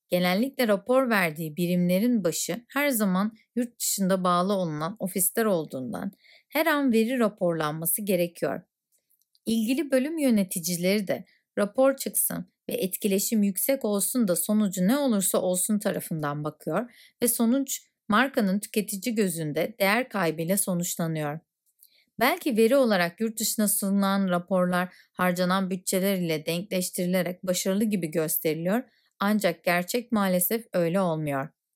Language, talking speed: Turkish, 115 wpm